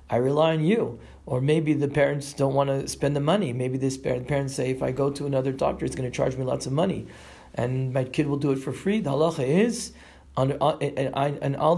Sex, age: male, 40-59